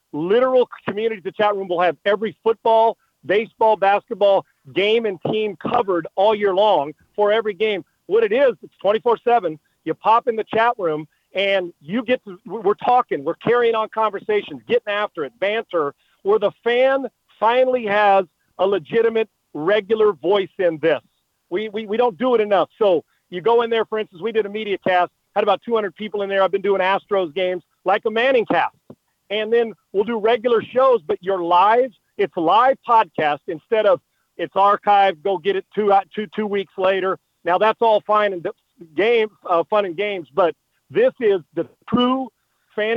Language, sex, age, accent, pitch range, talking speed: English, male, 40-59, American, 190-225 Hz, 185 wpm